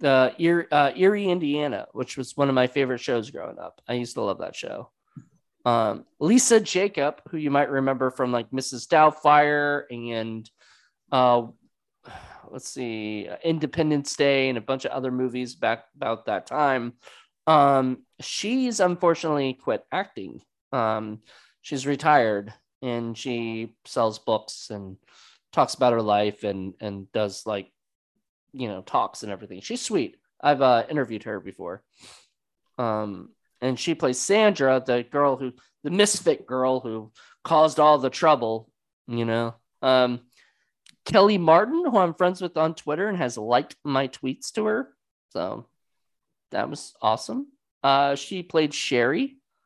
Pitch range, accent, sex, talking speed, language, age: 115-155 Hz, American, male, 145 wpm, English, 20-39